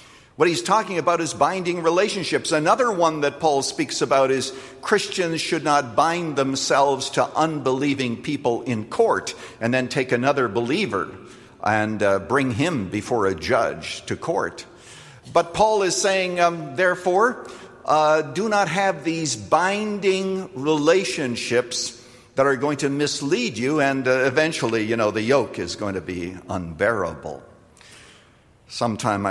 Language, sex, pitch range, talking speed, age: English, male, 115-155 Hz, 145 wpm, 50-69